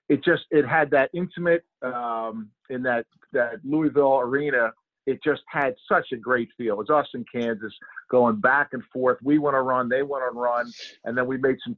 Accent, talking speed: American, 220 wpm